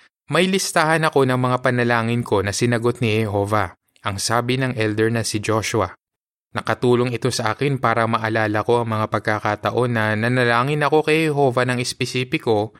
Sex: male